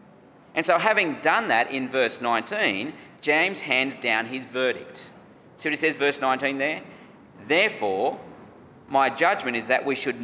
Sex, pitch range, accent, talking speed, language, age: male, 125-160 Hz, Australian, 160 wpm, English, 40-59